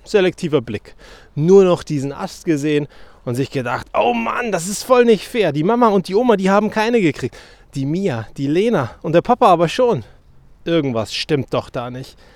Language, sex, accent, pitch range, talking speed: German, male, German, 120-190 Hz, 195 wpm